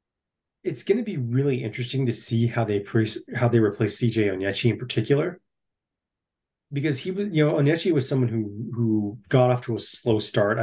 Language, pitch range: English, 105-130 Hz